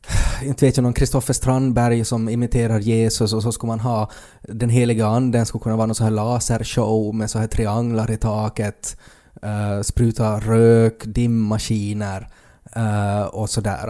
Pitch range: 105-125 Hz